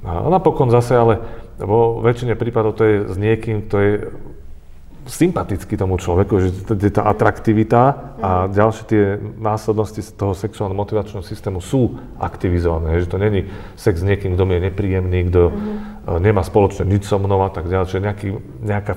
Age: 40-59